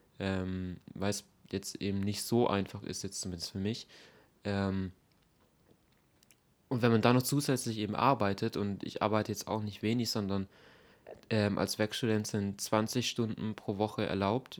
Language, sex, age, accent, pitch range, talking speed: German, male, 20-39, German, 95-115 Hz, 155 wpm